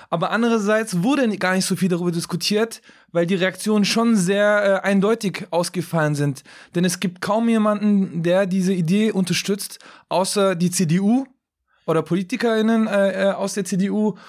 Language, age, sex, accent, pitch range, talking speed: German, 20-39, male, German, 180-205 Hz, 150 wpm